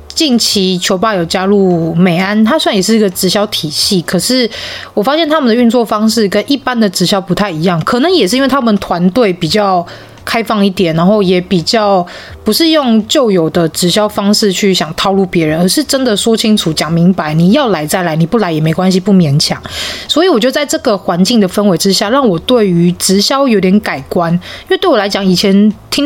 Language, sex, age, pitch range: Chinese, female, 20-39, 185-235 Hz